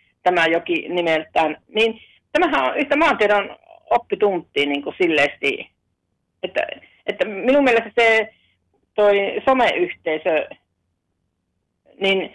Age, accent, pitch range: 40-59, native, 165-220 Hz